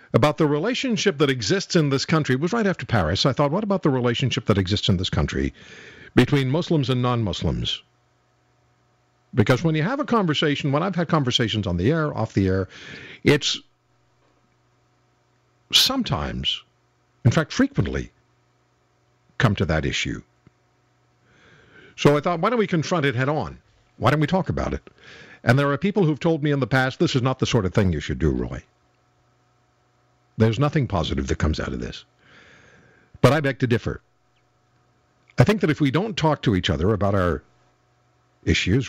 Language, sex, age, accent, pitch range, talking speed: English, male, 60-79, American, 95-155 Hz, 180 wpm